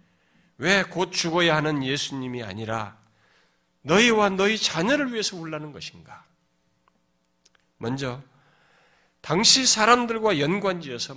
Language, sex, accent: Korean, male, native